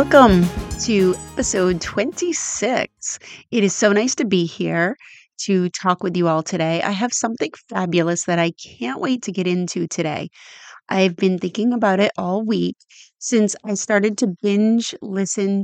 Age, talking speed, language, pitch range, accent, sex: 30-49, 160 wpm, English, 180-220 Hz, American, female